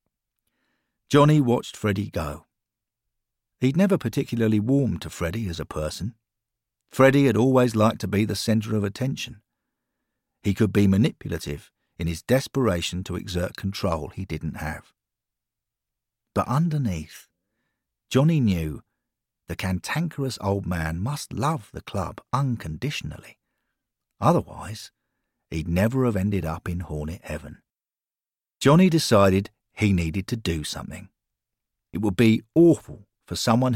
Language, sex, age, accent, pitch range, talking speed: English, male, 50-69, British, 90-120 Hz, 125 wpm